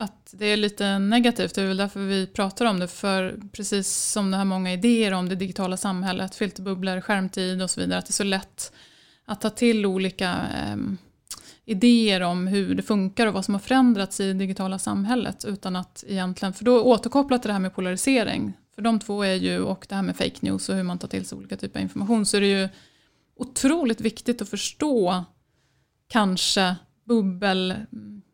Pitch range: 185-220 Hz